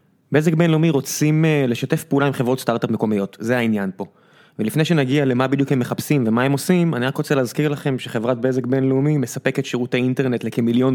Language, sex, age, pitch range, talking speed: Hebrew, male, 20-39, 125-160 Hz, 180 wpm